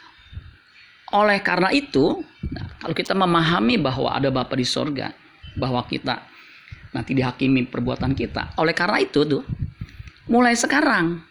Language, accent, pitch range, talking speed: Indonesian, native, 135-180 Hz, 125 wpm